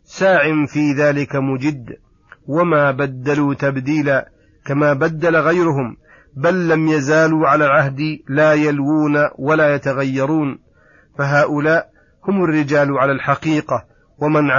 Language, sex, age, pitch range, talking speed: Arabic, male, 40-59, 135-150 Hz, 105 wpm